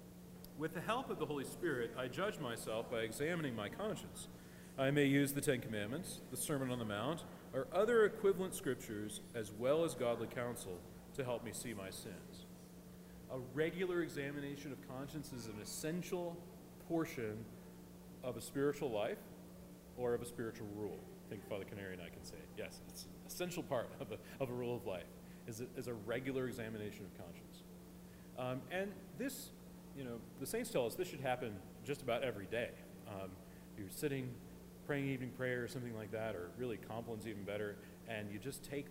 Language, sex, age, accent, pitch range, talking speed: English, male, 40-59, American, 90-145 Hz, 190 wpm